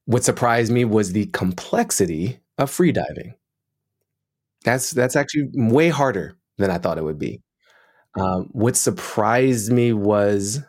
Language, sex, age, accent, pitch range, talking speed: English, male, 20-39, American, 90-115 Hz, 140 wpm